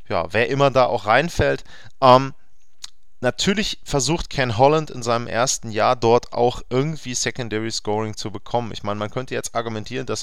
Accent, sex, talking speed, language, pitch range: German, male, 170 wpm, German, 110-135 Hz